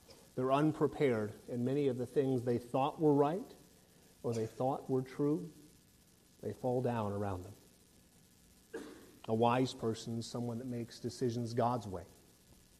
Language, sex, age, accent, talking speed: English, male, 40-59, American, 145 wpm